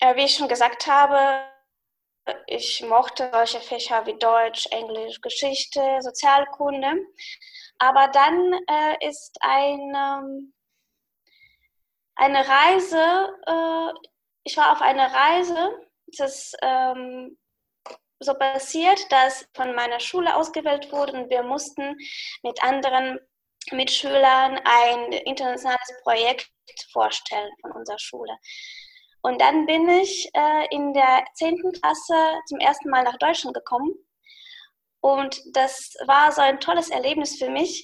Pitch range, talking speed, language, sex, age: 260-340 Hz, 115 wpm, German, female, 20-39